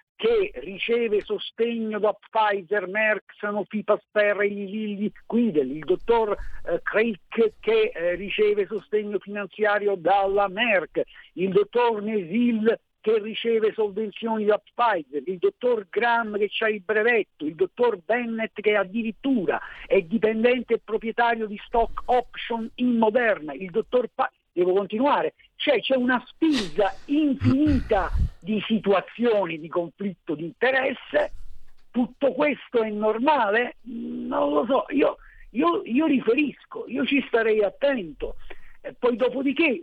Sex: male